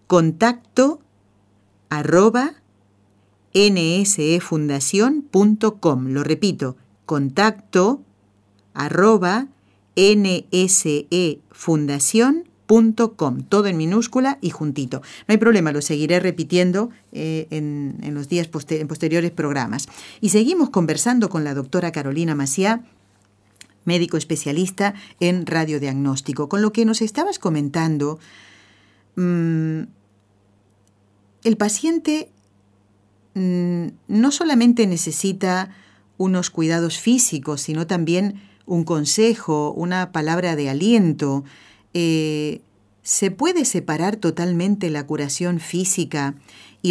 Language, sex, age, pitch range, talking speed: Spanish, female, 50-69, 145-200 Hz, 90 wpm